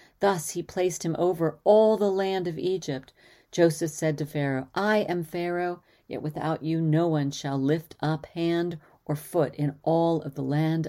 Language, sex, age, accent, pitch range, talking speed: English, female, 40-59, American, 140-170 Hz, 180 wpm